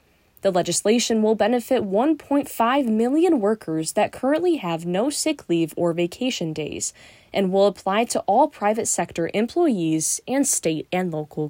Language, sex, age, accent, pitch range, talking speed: English, female, 10-29, American, 165-245 Hz, 145 wpm